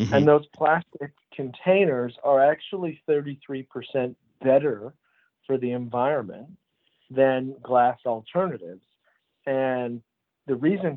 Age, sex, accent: 40-59, male, American